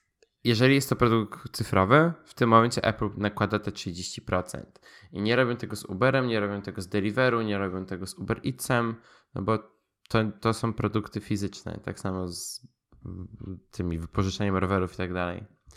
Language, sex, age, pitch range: Polish, male, 10-29, 95-115 Hz